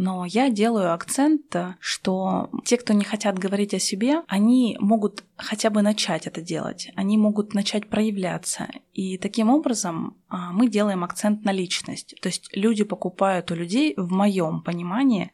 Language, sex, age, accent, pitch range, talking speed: Russian, female, 20-39, native, 185-220 Hz, 155 wpm